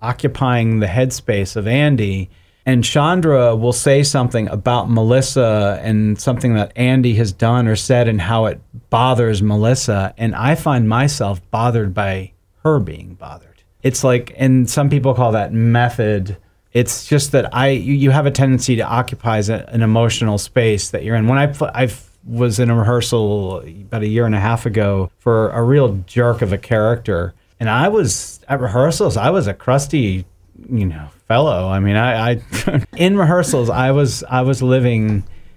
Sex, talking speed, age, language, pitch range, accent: male, 175 wpm, 40-59, English, 105-130 Hz, American